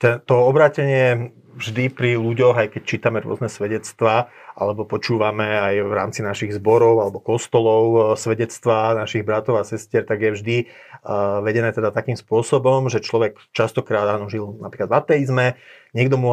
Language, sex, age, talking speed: Slovak, male, 30-49, 155 wpm